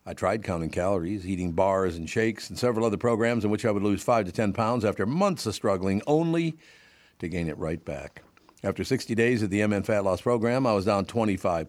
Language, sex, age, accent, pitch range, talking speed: English, male, 60-79, American, 100-125 Hz, 225 wpm